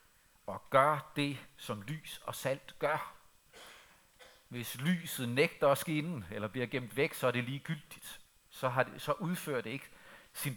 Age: 60-79